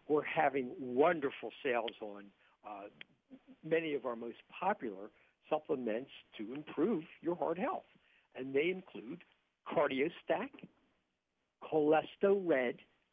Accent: American